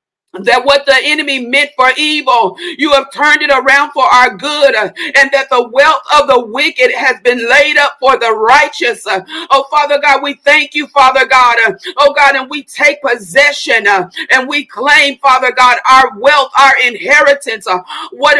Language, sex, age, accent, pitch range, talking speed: English, female, 50-69, American, 260-300 Hz, 175 wpm